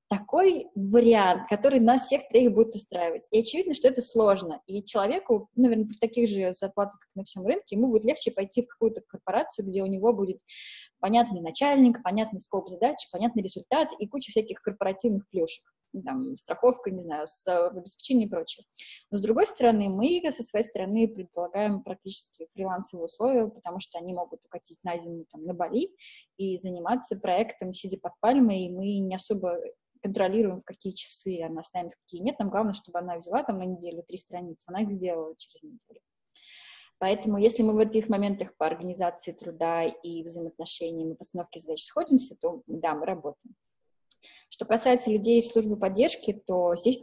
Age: 20-39